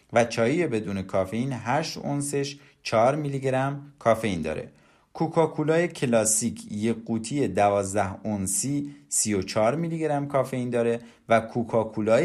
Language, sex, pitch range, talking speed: Persian, male, 105-145 Hz, 120 wpm